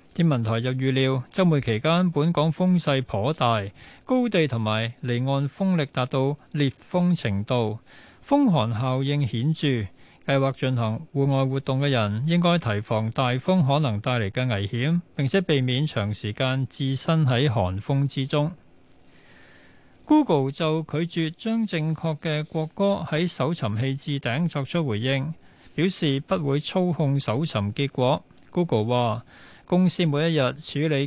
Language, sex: Chinese, male